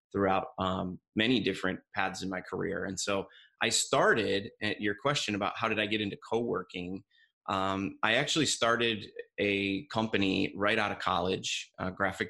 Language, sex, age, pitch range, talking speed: Hungarian, male, 30-49, 100-115 Hz, 165 wpm